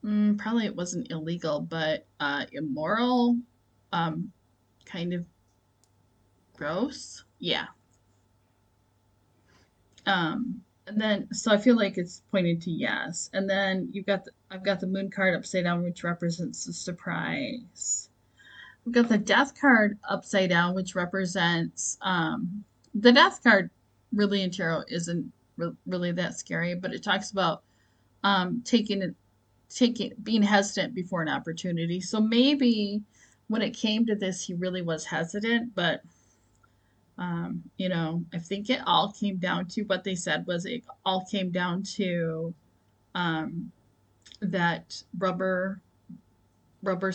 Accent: American